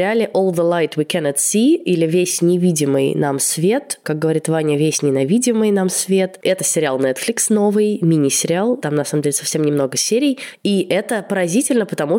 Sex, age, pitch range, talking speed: female, 20-39, 150-185 Hz, 165 wpm